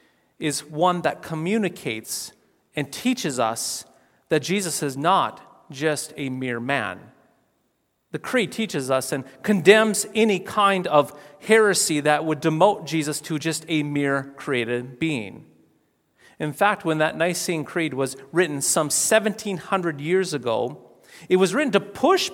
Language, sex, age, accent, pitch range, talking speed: English, male, 40-59, American, 130-170 Hz, 140 wpm